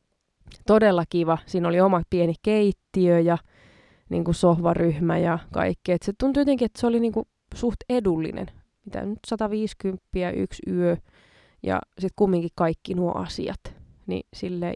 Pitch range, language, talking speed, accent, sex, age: 175-215 Hz, Finnish, 150 wpm, native, female, 20-39